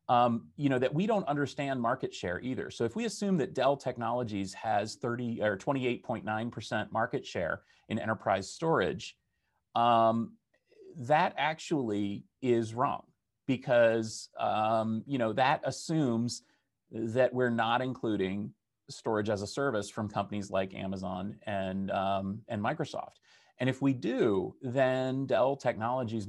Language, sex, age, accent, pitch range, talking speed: English, male, 30-49, American, 105-135 Hz, 145 wpm